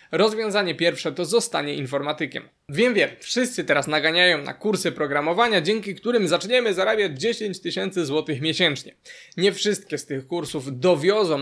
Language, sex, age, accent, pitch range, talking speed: Polish, male, 20-39, native, 155-220 Hz, 140 wpm